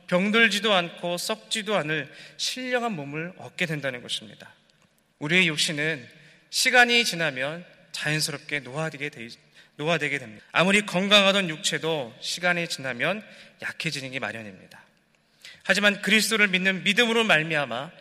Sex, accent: male, native